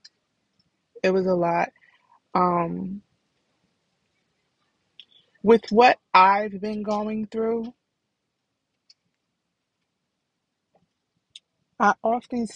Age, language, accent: 20-39, English, American